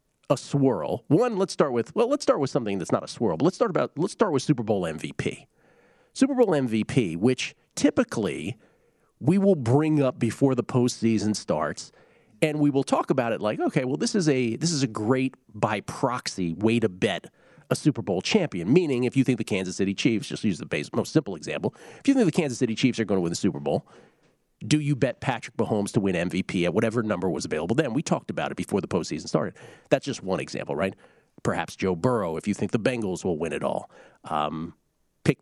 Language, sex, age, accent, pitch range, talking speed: English, male, 40-59, American, 110-150 Hz, 225 wpm